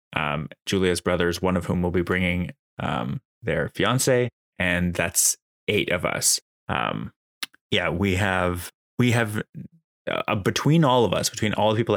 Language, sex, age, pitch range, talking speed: English, male, 20-39, 90-105 Hz, 160 wpm